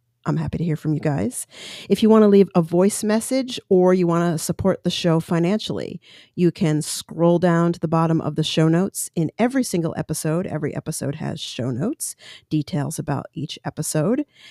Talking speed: 195 wpm